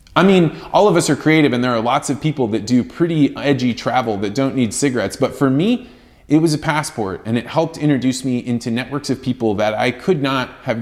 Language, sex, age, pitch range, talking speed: English, male, 20-39, 110-150 Hz, 240 wpm